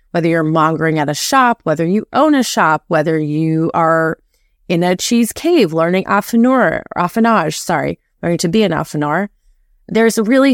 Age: 20-39